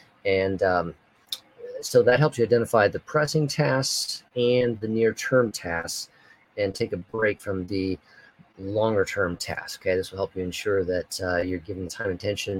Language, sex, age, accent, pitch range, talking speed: English, male, 30-49, American, 95-140 Hz, 175 wpm